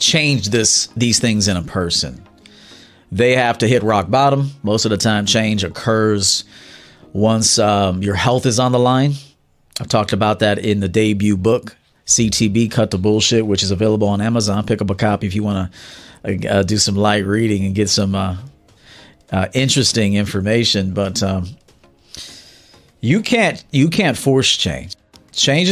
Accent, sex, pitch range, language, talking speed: American, male, 100-125 Hz, English, 170 wpm